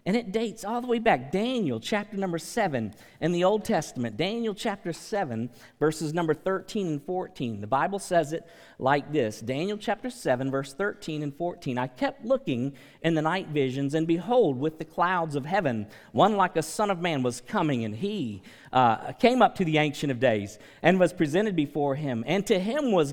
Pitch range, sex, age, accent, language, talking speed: 130-200 Hz, male, 50-69, American, English, 200 wpm